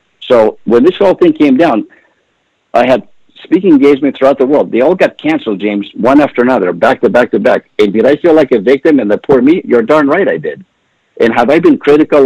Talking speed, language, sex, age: 235 wpm, English, male, 60-79